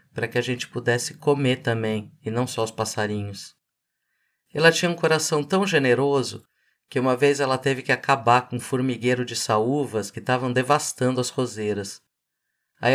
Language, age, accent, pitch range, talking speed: Portuguese, 50-69, Brazilian, 120-150 Hz, 165 wpm